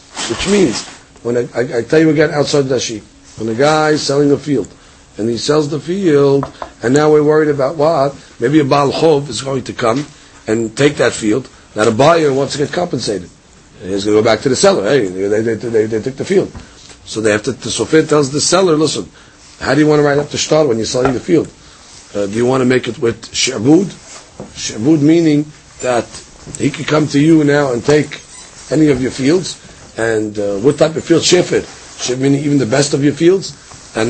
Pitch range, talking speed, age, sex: 125-155 Hz, 230 wpm, 40-59, male